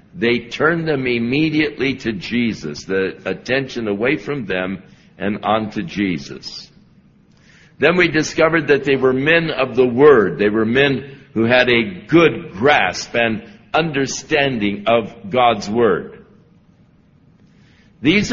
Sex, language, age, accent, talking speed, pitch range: male, English, 60-79, American, 125 wpm, 120-165 Hz